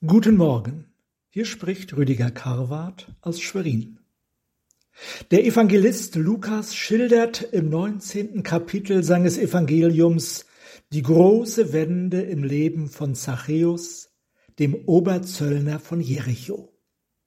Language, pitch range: German, 150-195 Hz